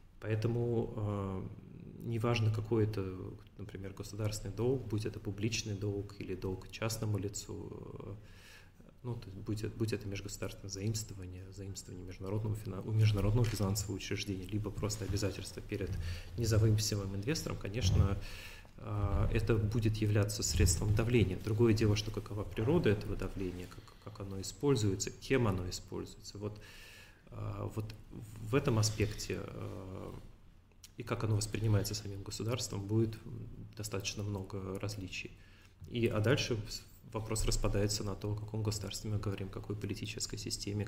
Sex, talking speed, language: male, 125 wpm, Russian